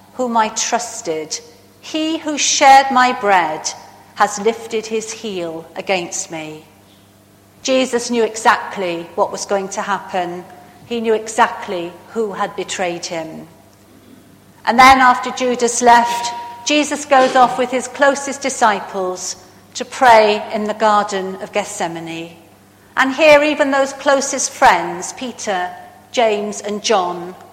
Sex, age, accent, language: female, 50-69, British, English